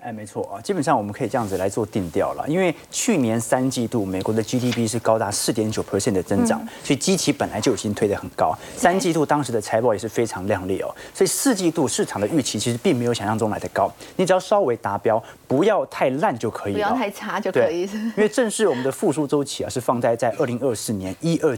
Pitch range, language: 110-175 Hz, Chinese